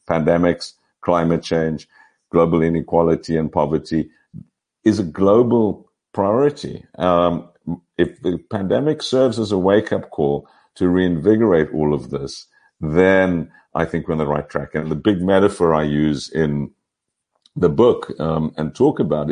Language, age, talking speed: English, 50-69, 145 wpm